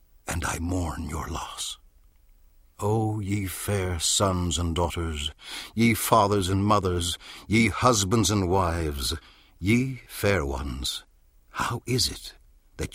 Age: 60-79